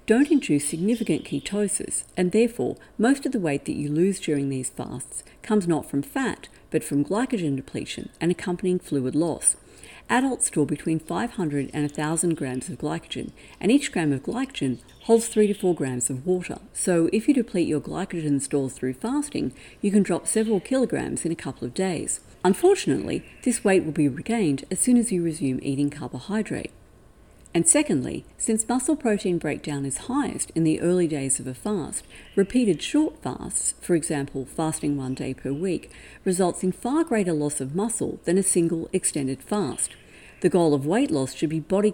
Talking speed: 180 wpm